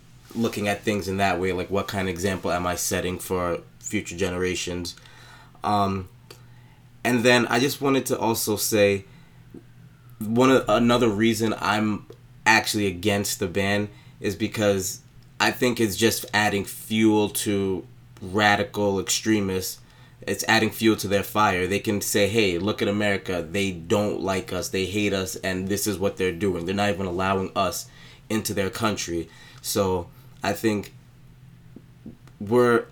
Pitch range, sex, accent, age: 95-115 Hz, male, American, 20-39